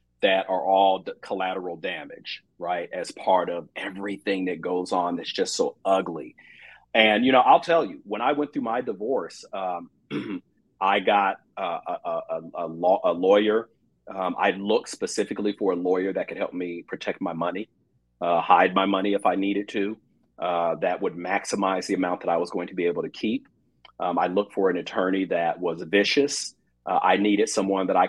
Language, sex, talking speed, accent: English, male, 195 wpm, American